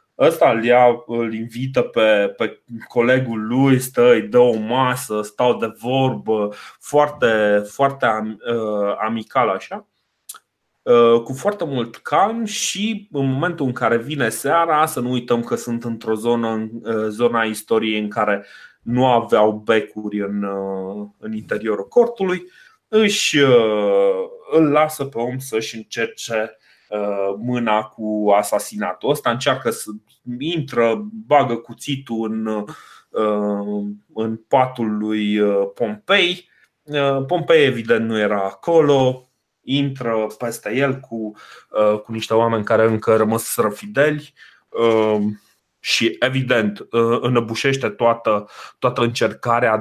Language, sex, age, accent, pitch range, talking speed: Romanian, male, 20-39, native, 105-135 Hz, 110 wpm